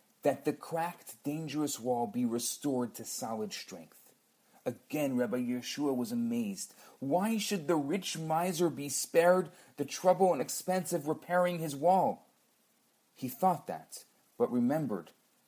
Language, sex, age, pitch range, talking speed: English, male, 40-59, 125-180 Hz, 135 wpm